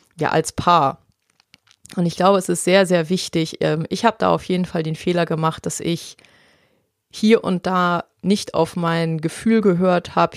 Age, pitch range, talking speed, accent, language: 30-49, 160-180 Hz, 180 wpm, German, German